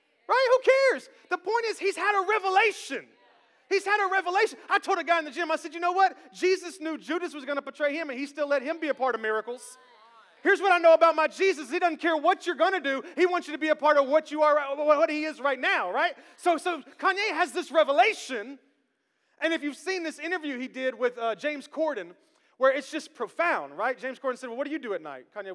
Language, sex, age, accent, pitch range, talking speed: English, male, 30-49, American, 225-330 Hz, 260 wpm